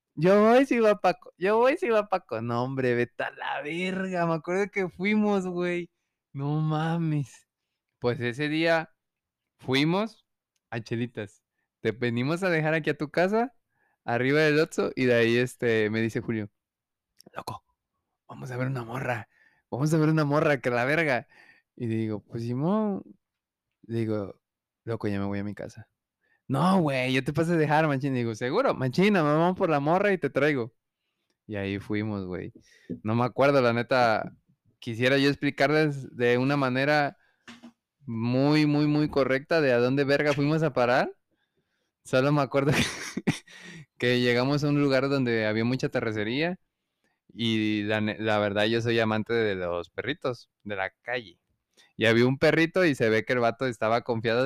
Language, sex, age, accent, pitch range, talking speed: Spanish, male, 20-39, Mexican, 115-155 Hz, 175 wpm